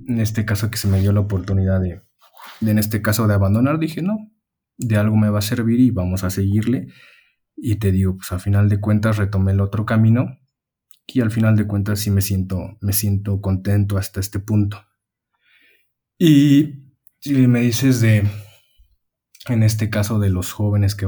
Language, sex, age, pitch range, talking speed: Spanish, male, 20-39, 100-115 Hz, 190 wpm